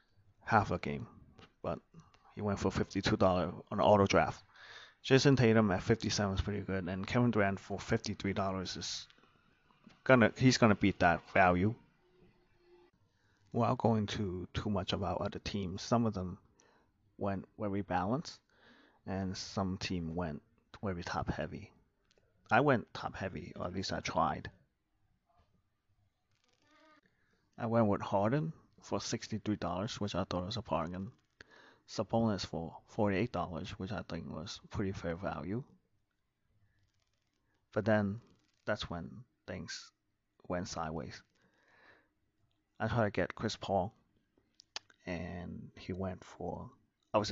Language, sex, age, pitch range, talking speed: English, male, 30-49, 90-110 Hz, 130 wpm